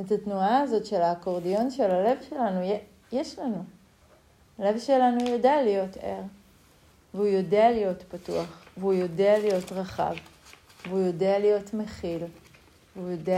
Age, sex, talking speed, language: 40-59, female, 130 wpm, Hebrew